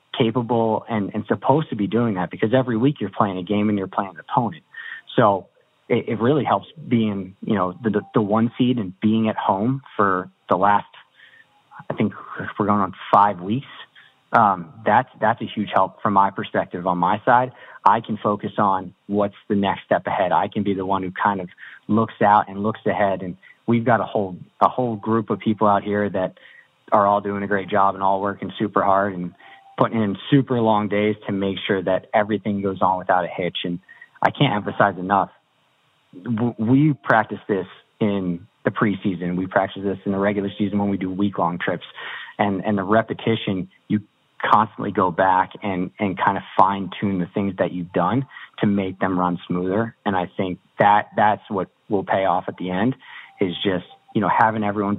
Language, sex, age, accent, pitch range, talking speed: English, male, 30-49, American, 95-110 Hz, 205 wpm